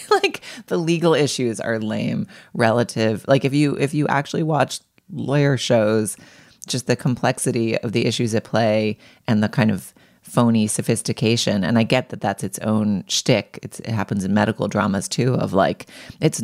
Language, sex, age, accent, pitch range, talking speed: English, female, 30-49, American, 110-145 Hz, 175 wpm